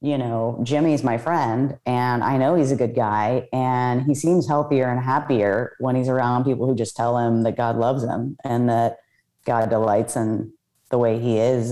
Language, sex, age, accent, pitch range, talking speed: English, female, 30-49, American, 120-140 Hz, 200 wpm